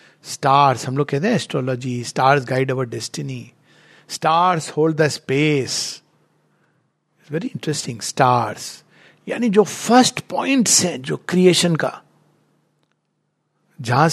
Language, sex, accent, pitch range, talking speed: Hindi, male, native, 140-190 Hz, 115 wpm